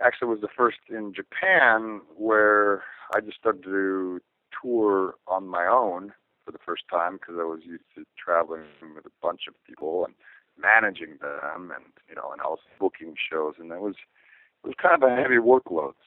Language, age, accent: English, 40-59, American